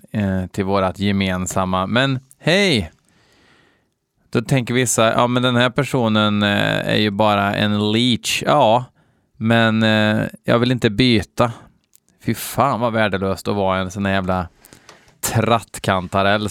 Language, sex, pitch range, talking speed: Swedish, male, 105-140 Hz, 125 wpm